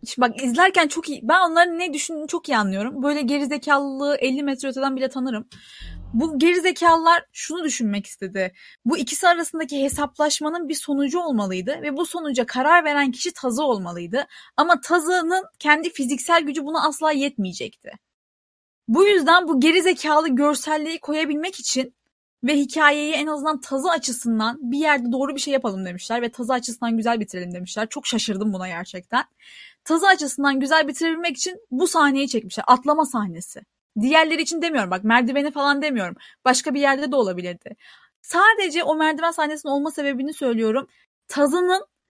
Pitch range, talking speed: 255-320 Hz, 150 wpm